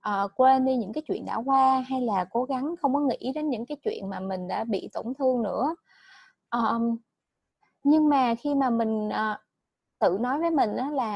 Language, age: Vietnamese, 20-39